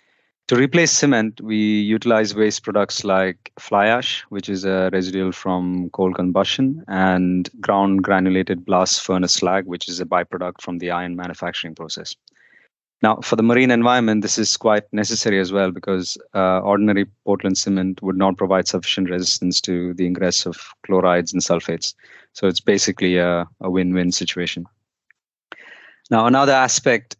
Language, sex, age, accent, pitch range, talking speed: English, male, 30-49, Indian, 95-110 Hz, 155 wpm